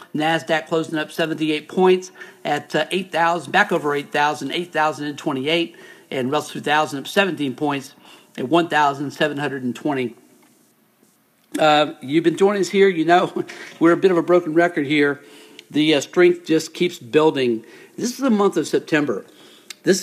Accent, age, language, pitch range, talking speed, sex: American, 50-69, English, 145-175 Hz, 140 wpm, male